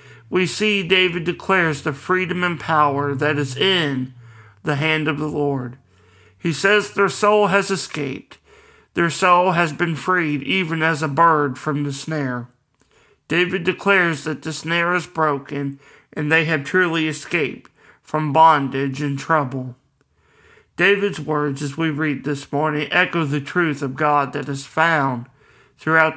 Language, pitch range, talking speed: English, 140-175 Hz, 150 wpm